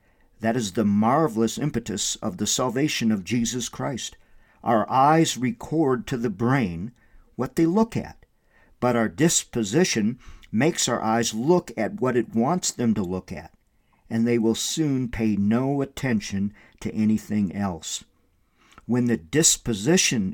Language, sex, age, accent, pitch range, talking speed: English, male, 50-69, American, 105-125 Hz, 145 wpm